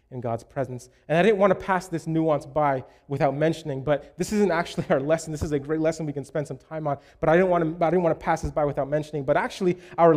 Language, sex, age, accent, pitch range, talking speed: English, male, 20-39, American, 145-185 Hz, 285 wpm